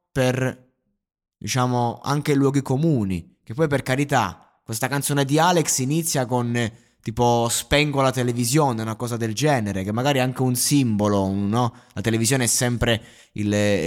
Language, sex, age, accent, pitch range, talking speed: Italian, male, 20-39, native, 115-155 Hz, 150 wpm